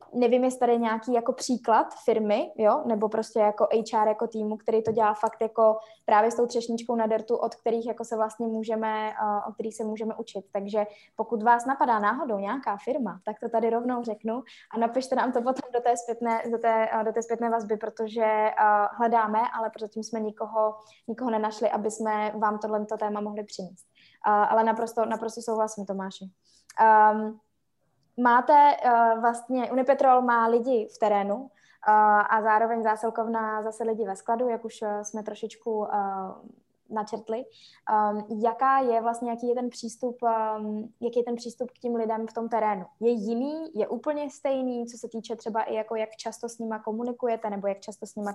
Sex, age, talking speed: female, 20-39, 180 wpm